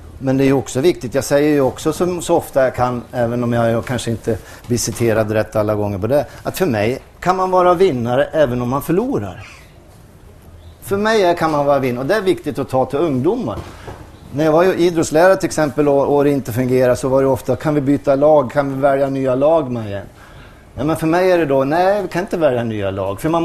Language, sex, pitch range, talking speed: English, male, 120-160 Hz, 230 wpm